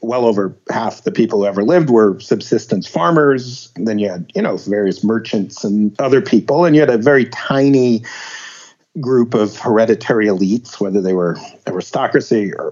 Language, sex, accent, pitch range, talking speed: English, male, American, 105-135 Hz, 175 wpm